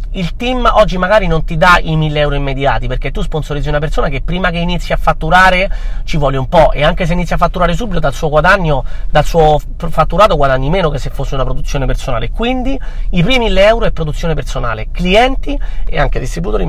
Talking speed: 210 wpm